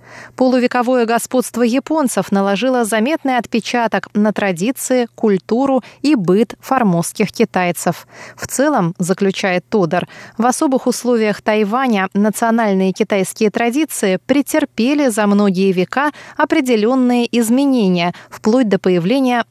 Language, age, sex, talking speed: Russian, 20-39, female, 100 wpm